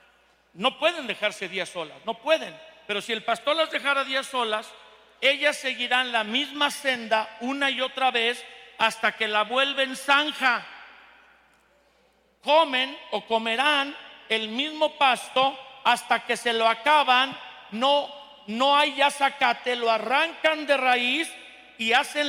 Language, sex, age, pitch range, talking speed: Spanish, male, 50-69, 220-275 Hz, 135 wpm